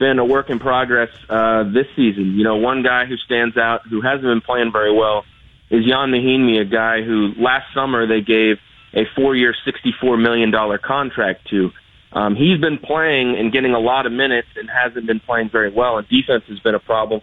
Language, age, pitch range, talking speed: English, 30-49, 110-130 Hz, 210 wpm